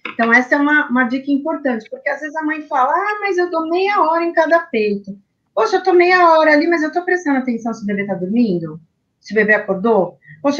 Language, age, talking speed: Portuguese, 30-49, 245 wpm